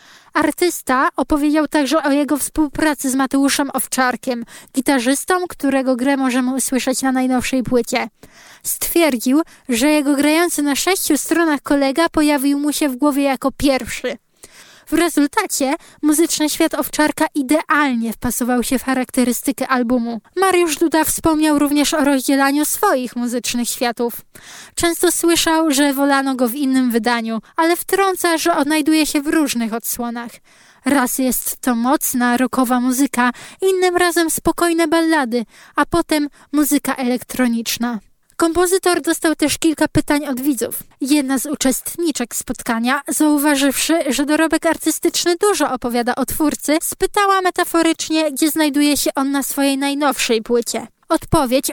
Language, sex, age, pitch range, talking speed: Polish, female, 20-39, 260-320 Hz, 130 wpm